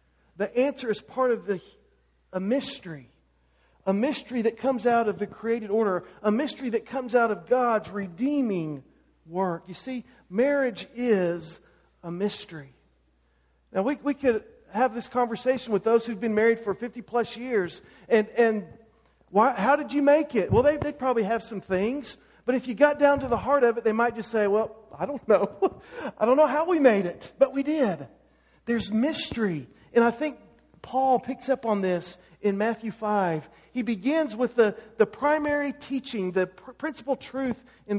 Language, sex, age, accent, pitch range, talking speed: English, male, 40-59, American, 205-260 Hz, 180 wpm